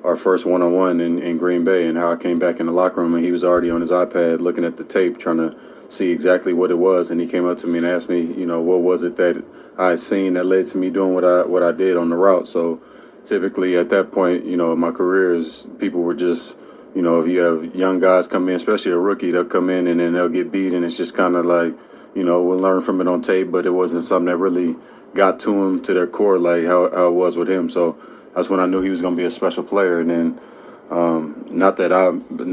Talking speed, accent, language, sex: 270 wpm, American, English, male